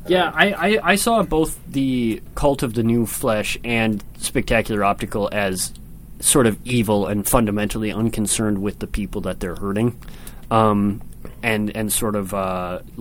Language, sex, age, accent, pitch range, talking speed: English, male, 30-49, American, 105-130 Hz, 155 wpm